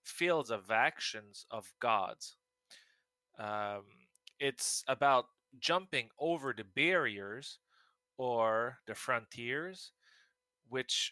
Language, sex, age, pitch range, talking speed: English, male, 20-39, 110-165 Hz, 85 wpm